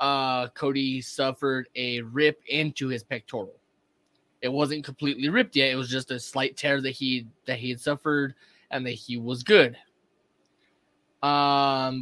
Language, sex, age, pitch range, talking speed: English, male, 20-39, 125-145 Hz, 150 wpm